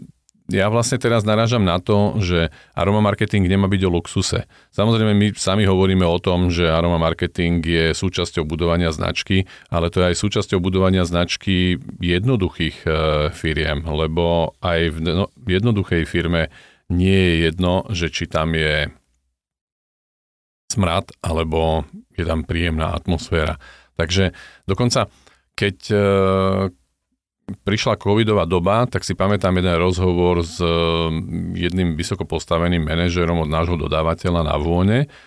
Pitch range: 85-95 Hz